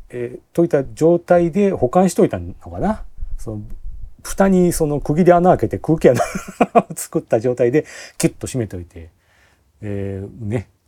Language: Japanese